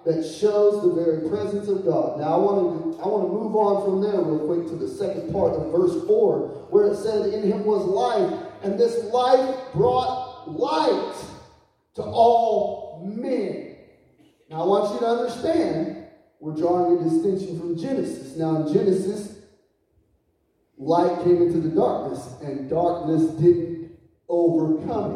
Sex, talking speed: male, 155 wpm